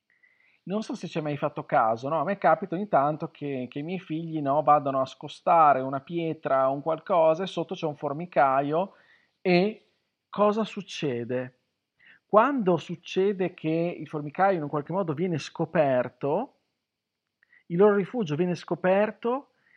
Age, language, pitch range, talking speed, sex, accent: 40-59, Italian, 145-200 Hz, 160 wpm, male, native